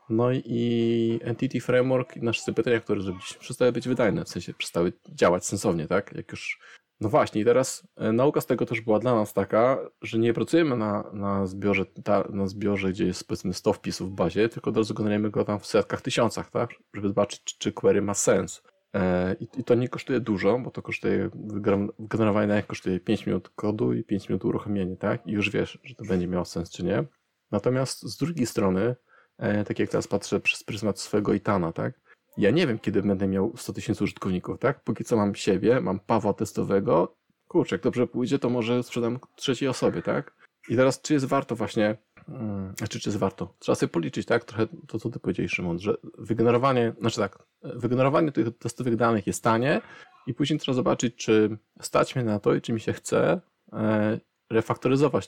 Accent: native